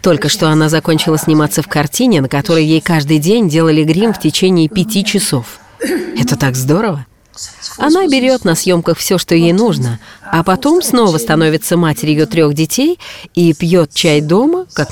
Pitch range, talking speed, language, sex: 150-200 Hz, 165 wpm, Russian, female